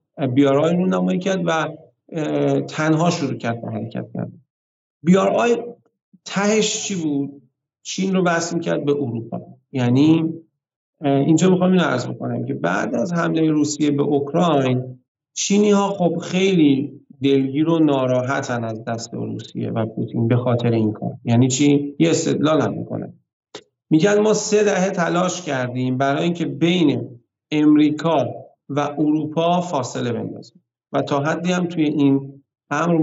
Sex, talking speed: male, 145 wpm